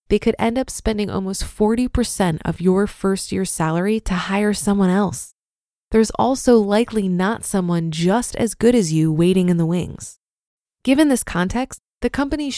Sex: female